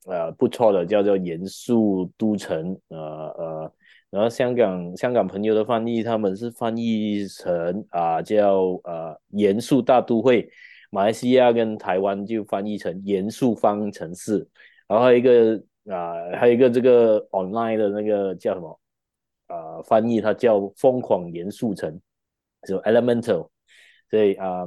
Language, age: Chinese, 30-49